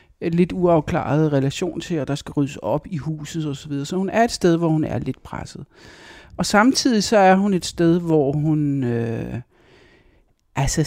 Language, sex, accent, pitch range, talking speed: Danish, male, native, 140-185 Hz, 180 wpm